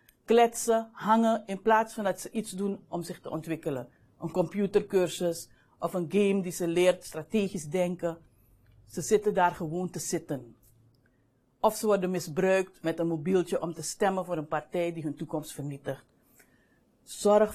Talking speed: 160 wpm